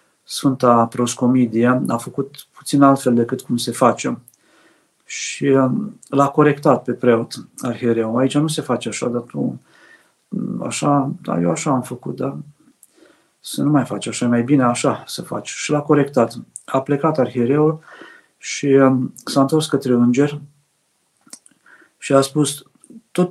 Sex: male